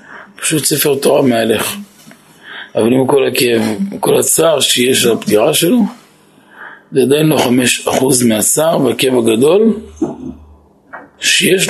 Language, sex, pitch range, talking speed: Hebrew, male, 135-205 Hz, 120 wpm